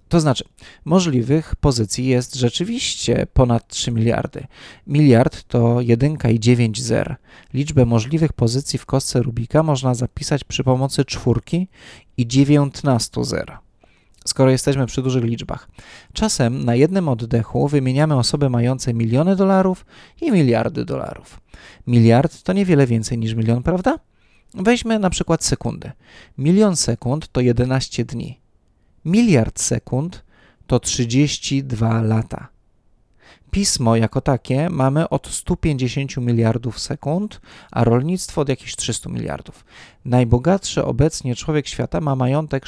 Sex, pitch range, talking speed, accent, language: male, 120-150 Hz, 120 wpm, native, Polish